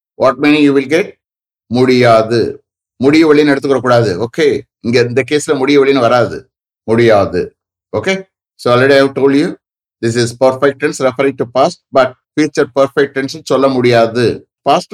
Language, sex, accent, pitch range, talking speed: English, male, Indian, 110-140 Hz, 150 wpm